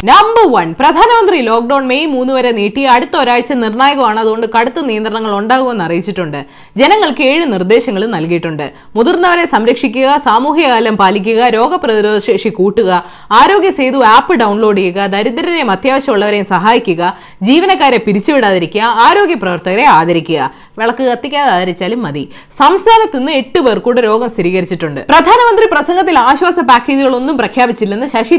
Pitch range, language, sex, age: 215-320 Hz, Malayalam, female, 20-39